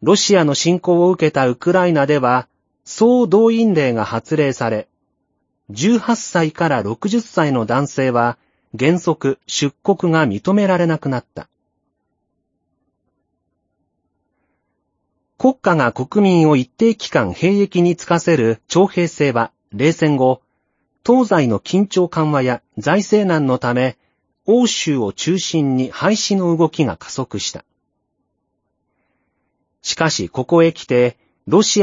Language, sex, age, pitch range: Japanese, male, 40-59, 130-180 Hz